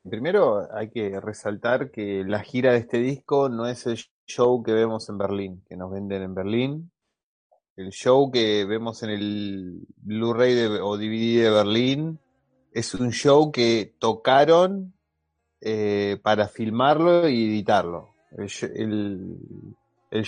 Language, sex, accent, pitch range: Spanish, male, Argentinian, 105-125 Hz